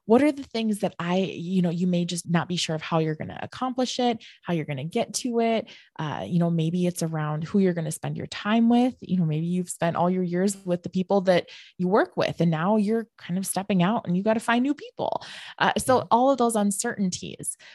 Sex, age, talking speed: female, 20-39, 260 wpm